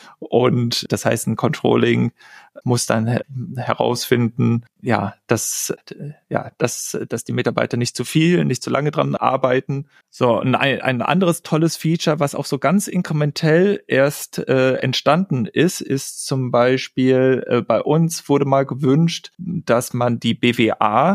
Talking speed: 145 wpm